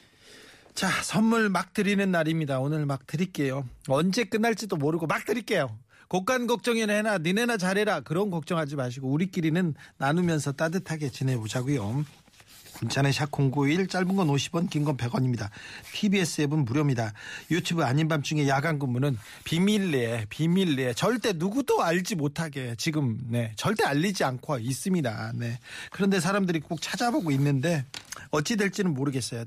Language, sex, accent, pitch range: Korean, male, native, 130-175 Hz